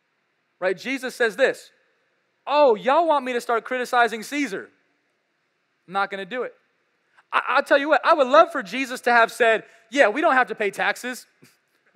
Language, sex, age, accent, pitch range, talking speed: English, male, 20-39, American, 195-245 Hz, 195 wpm